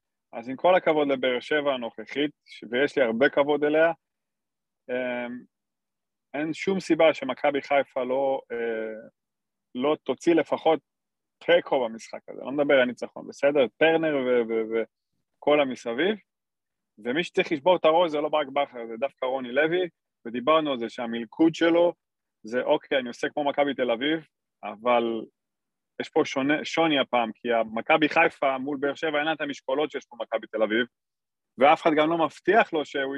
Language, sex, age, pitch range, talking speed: Hebrew, male, 20-39, 125-165 Hz, 155 wpm